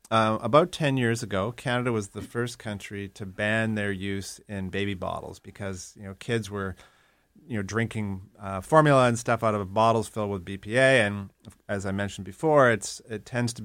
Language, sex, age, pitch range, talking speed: English, male, 30-49, 100-120 Hz, 195 wpm